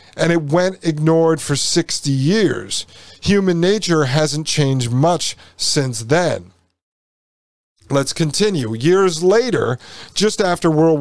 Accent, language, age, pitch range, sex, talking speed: American, English, 50-69, 140-185 Hz, male, 115 wpm